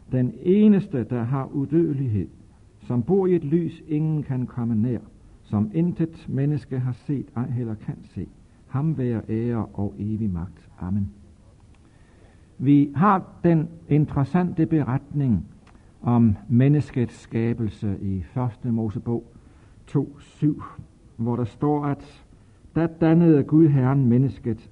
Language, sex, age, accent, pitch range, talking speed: Danish, male, 60-79, native, 105-145 Hz, 125 wpm